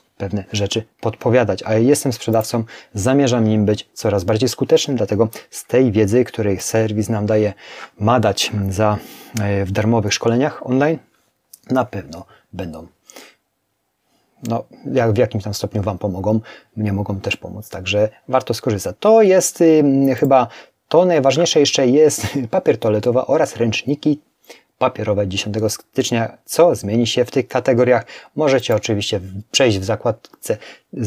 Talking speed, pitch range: 140 wpm, 100-125 Hz